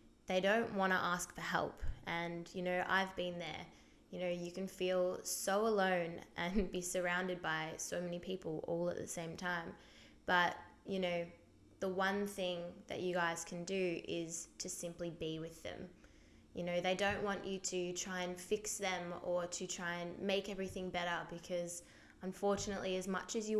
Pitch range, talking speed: 175-195 Hz, 185 wpm